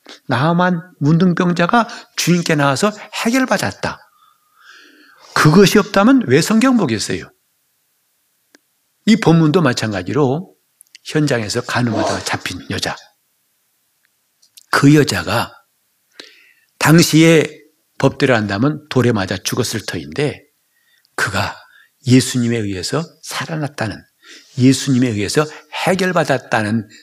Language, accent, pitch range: Korean, native, 125-185 Hz